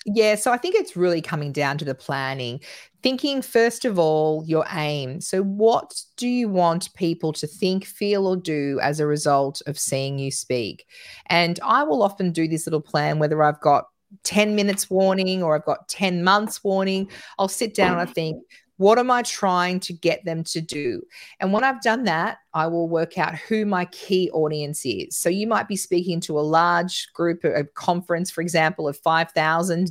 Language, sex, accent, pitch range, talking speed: English, female, Australian, 155-190 Hz, 200 wpm